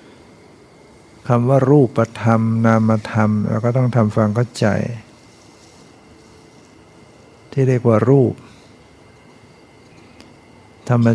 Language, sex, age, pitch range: Thai, male, 60-79, 110-120 Hz